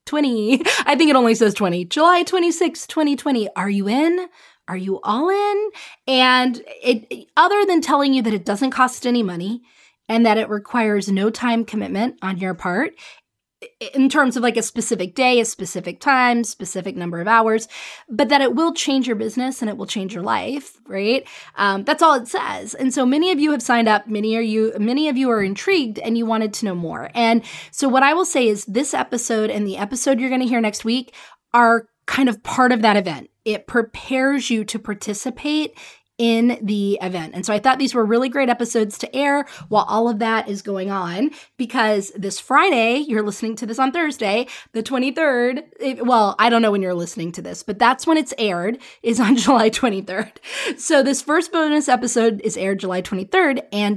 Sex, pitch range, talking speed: female, 205-270 Hz, 205 wpm